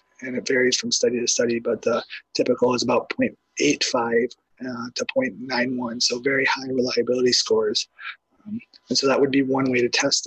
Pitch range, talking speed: 125-155 Hz, 180 wpm